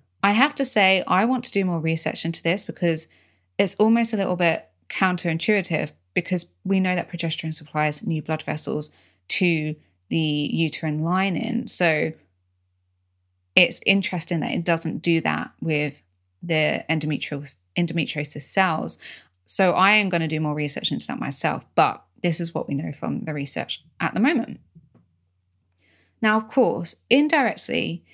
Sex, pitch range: female, 155-195 Hz